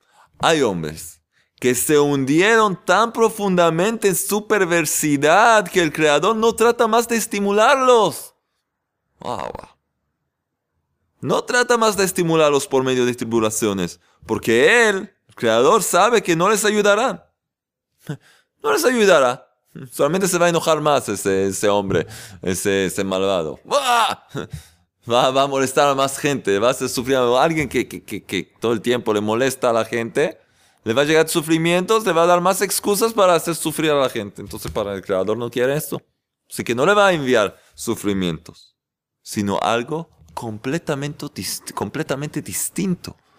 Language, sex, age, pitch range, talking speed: Spanish, male, 30-49, 115-180 Hz, 155 wpm